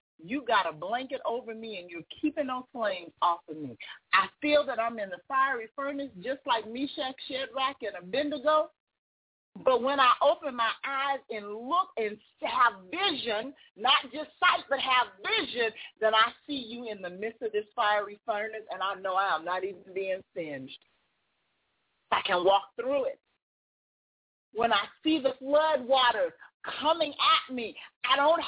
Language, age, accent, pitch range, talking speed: English, 40-59, American, 230-335 Hz, 170 wpm